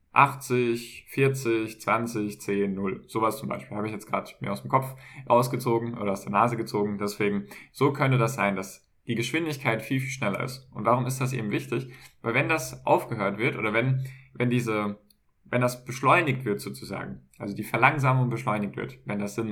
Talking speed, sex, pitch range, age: 190 wpm, male, 105-130 Hz, 10-29